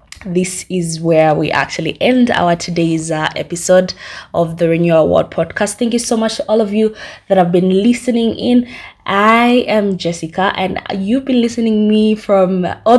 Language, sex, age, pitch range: English, female, 20-39, 160-200 Hz